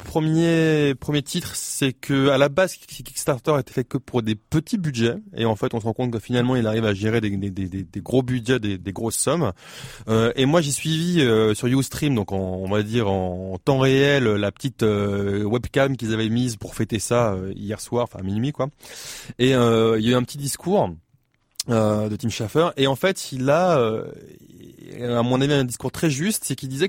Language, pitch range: French, 110-150 Hz